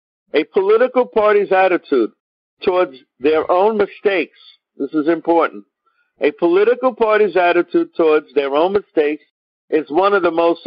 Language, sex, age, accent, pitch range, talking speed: English, male, 50-69, American, 155-210 Hz, 135 wpm